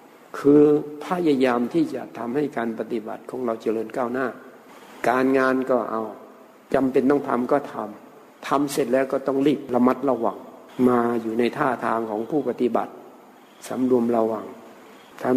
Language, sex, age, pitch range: Thai, male, 60-79, 125-150 Hz